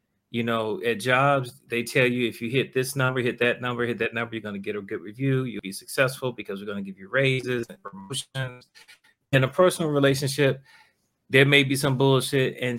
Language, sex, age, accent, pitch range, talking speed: English, male, 40-59, American, 115-135 Hz, 220 wpm